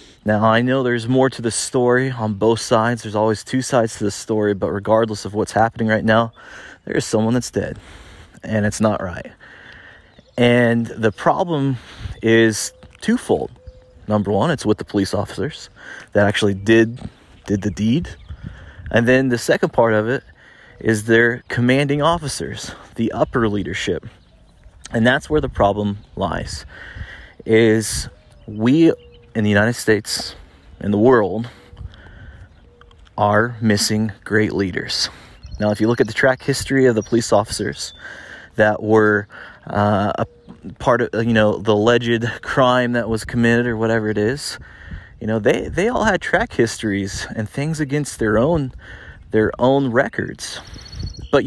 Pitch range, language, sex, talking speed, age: 105-120 Hz, English, male, 155 wpm, 30-49